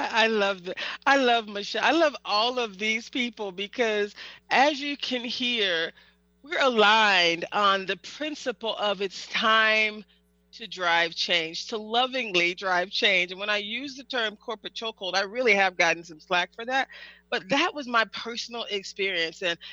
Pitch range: 195-270 Hz